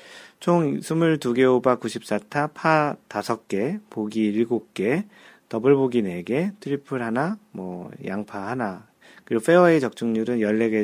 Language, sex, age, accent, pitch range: Korean, male, 40-59, native, 105-135 Hz